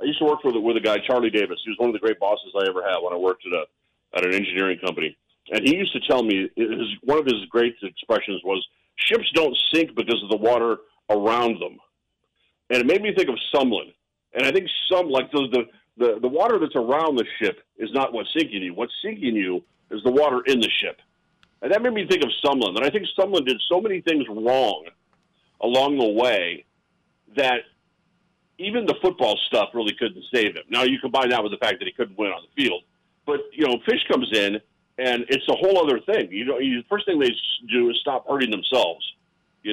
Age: 40-59